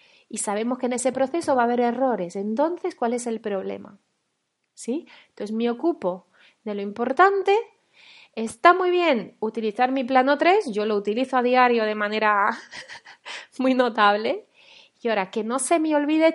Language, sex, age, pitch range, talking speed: Spanish, female, 30-49, 220-285 Hz, 165 wpm